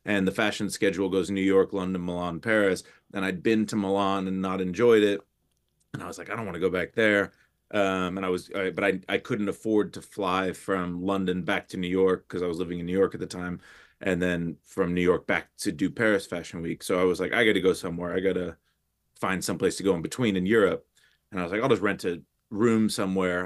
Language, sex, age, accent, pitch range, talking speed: English, male, 30-49, American, 90-100 Hz, 255 wpm